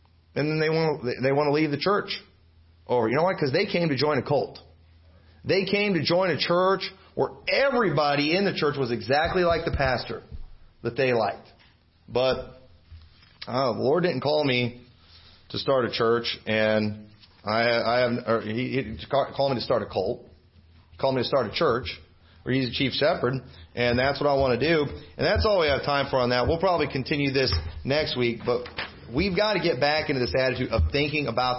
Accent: American